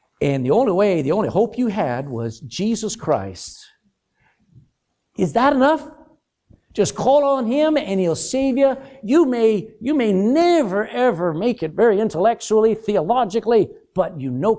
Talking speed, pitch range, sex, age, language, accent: 150 wpm, 180-260 Hz, male, 50-69, English, American